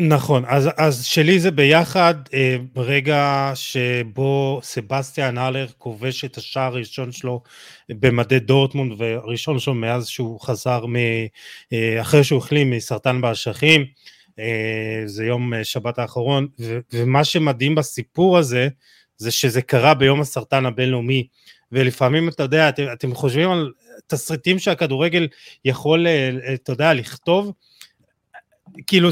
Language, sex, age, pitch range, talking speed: Hebrew, male, 20-39, 130-165 Hz, 120 wpm